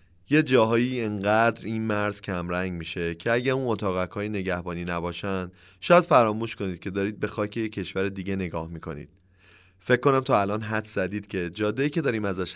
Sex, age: male, 30-49